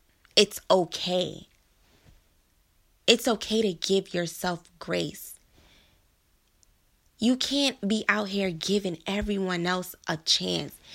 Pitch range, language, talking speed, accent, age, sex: 165-215 Hz, English, 100 wpm, American, 20-39, female